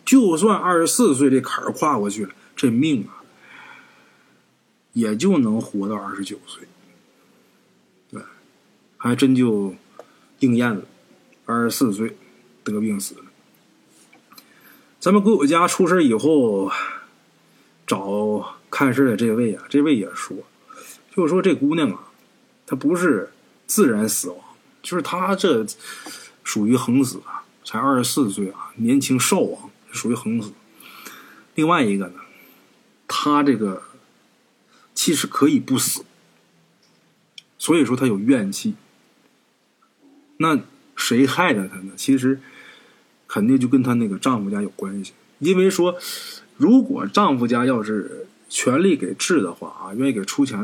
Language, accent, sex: Chinese, native, male